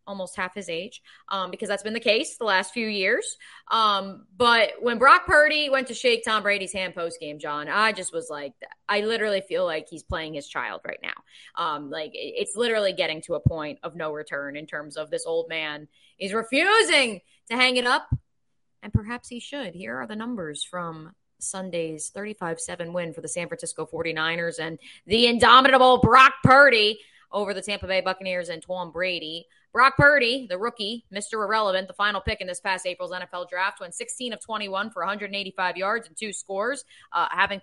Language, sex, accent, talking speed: English, female, American, 195 wpm